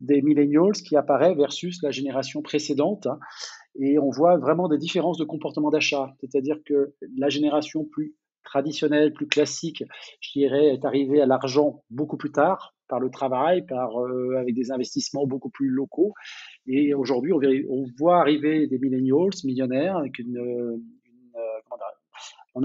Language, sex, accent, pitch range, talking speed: French, male, French, 135-155 Hz, 155 wpm